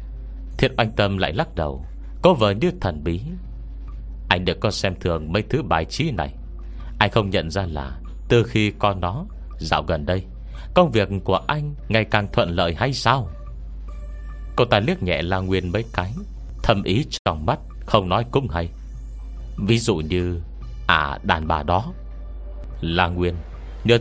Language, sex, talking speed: Vietnamese, male, 170 wpm